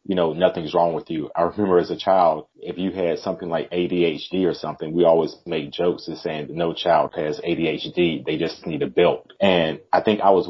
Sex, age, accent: male, 30-49, American